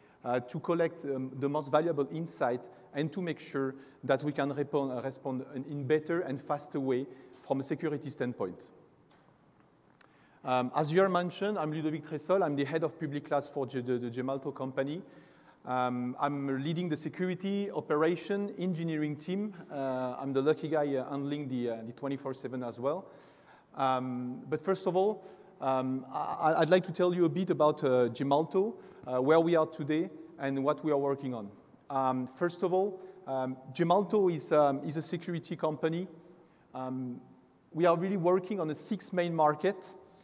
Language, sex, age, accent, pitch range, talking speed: English, male, 40-59, French, 135-175 Hz, 165 wpm